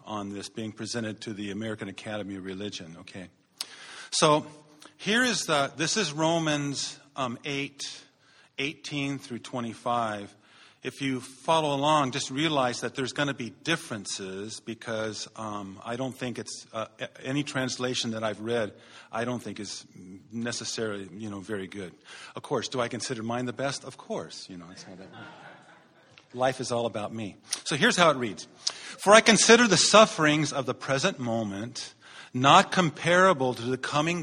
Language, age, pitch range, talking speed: English, 50-69, 110-150 Hz, 160 wpm